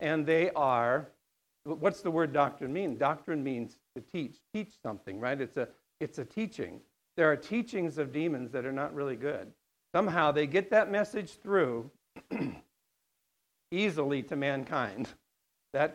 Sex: male